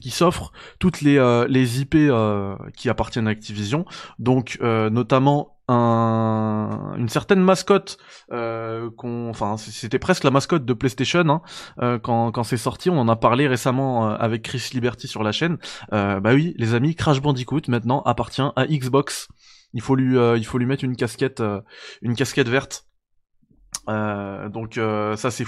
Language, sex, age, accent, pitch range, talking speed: French, male, 20-39, French, 115-140 Hz, 175 wpm